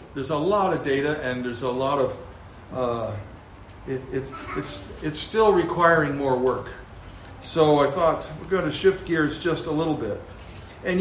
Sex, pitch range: male, 130-170 Hz